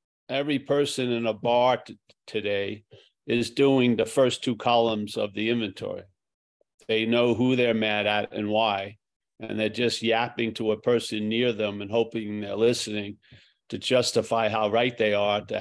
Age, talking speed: 50-69, 170 wpm